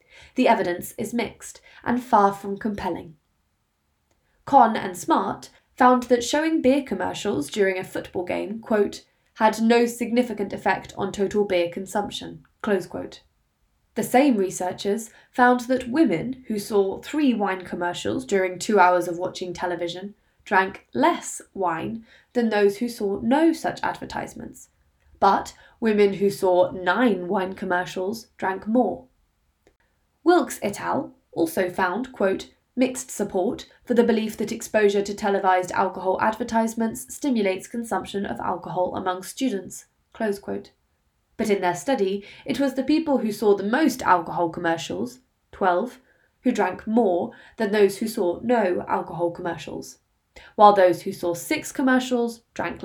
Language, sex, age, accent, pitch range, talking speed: English, female, 20-39, British, 185-245 Hz, 140 wpm